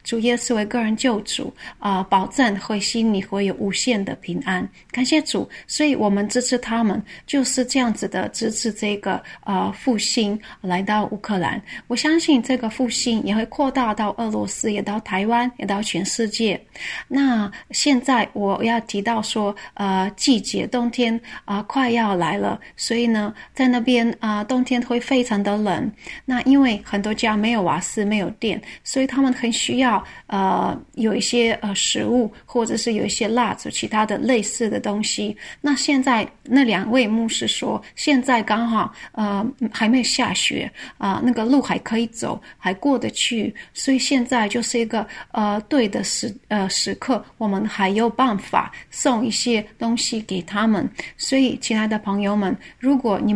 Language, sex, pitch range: Chinese, female, 210-250 Hz